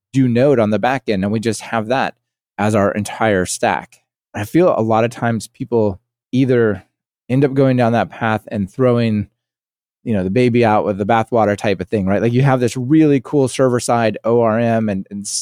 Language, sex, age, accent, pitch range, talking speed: English, male, 20-39, American, 105-130 Hz, 205 wpm